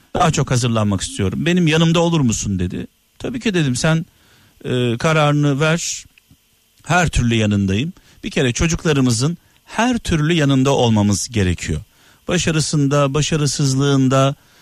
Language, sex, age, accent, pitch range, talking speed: Turkish, male, 50-69, native, 115-160 Hz, 120 wpm